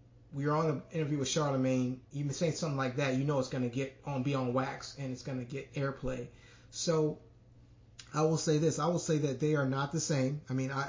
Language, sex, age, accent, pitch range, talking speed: English, male, 30-49, American, 130-165 Hz, 250 wpm